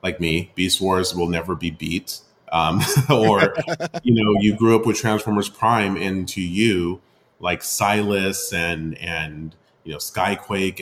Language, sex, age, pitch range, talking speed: English, male, 30-49, 85-105 Hz, 155 wpm